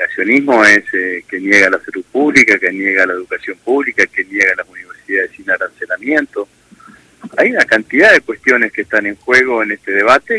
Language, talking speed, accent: Spanish, 175 wpm, Argentinian